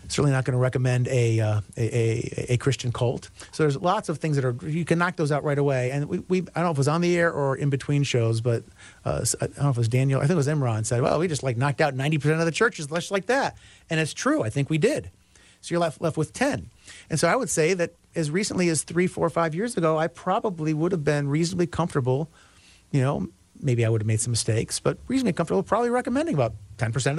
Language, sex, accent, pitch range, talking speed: English, male, American, 125-175 Hz, 265 wpm